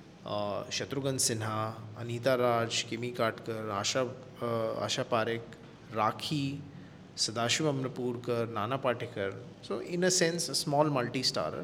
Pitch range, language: 125-170 Hz, Hindi